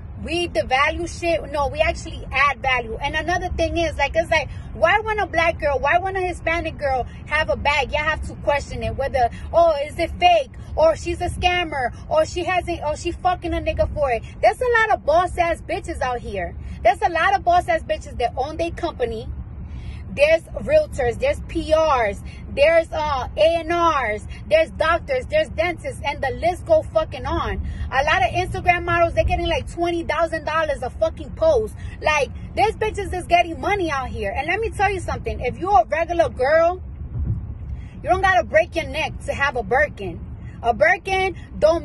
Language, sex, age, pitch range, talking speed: English, female, 20-39, 305-355 Hz, 195 wpm